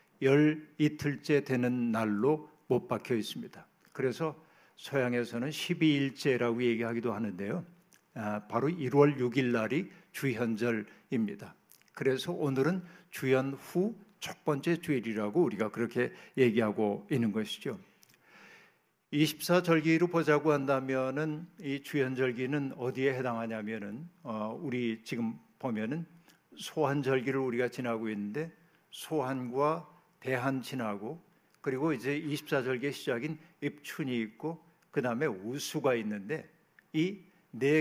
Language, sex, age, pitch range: Korean, male, 60-79, 125-160 Hz